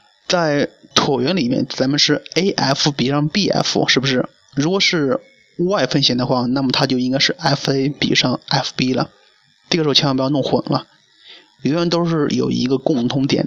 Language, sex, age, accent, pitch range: Chinese, male, 20-39, native, 130-165 Hz